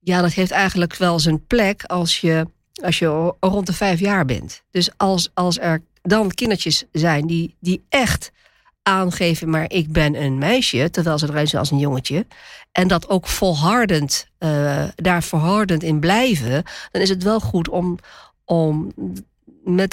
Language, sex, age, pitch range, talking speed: Dutch, female, 50-69, 155-195 Hz, 170 wpm